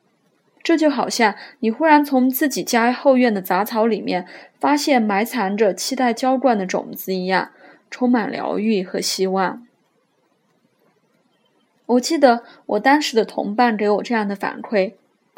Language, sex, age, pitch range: Chinese, female, 20-39, 205-260 Hz